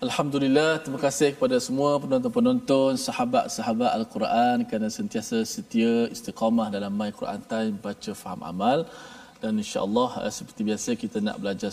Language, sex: Malayalam, male